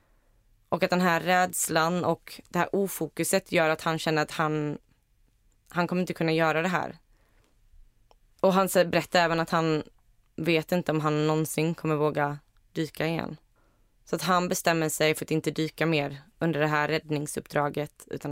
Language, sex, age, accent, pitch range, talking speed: Swedish, female, 20-39, native, 145-175 Hz, 170 wpm